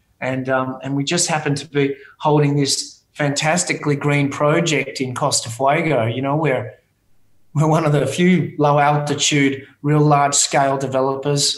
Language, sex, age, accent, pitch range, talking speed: English, male, 30-49, Australian, 140-175 Hz, 155 wpm